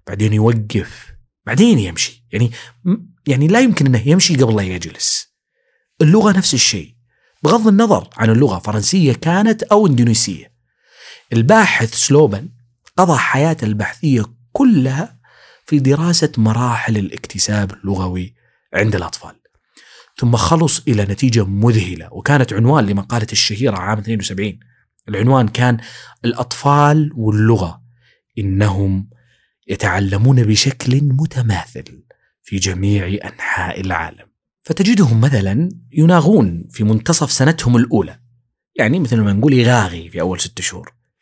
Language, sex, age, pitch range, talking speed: Arabic, male, 30-49, 105-155 Hz, 110 wpm